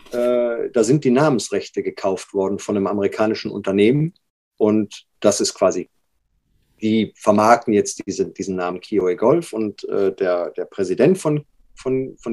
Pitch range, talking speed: 105-145 Hz, 150 wpm